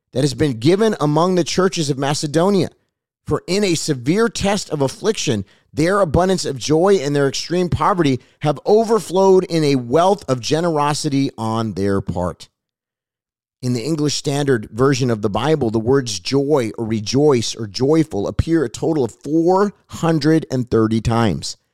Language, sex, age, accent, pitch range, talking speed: English, male, 30-49, American, 125-170 Hz, 150 wpm